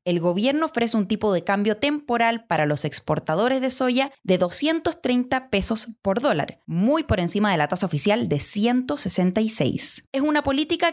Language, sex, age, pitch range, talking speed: Spanish, female, 20-39, 180-270 Hz, 165 wpm